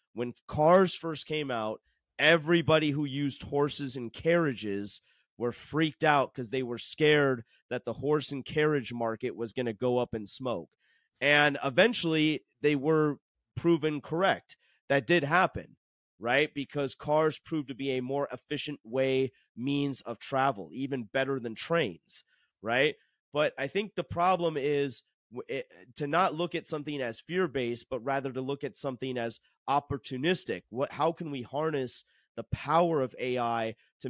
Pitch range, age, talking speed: 120-150 Hz, 30-49, 160 wpm